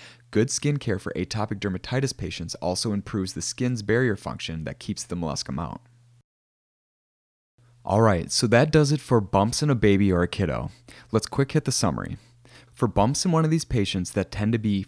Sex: male